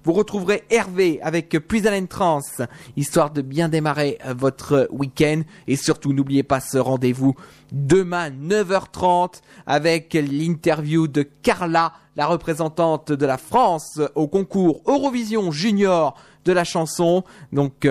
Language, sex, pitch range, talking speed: French, male, 140-180 Hz, 125 wpm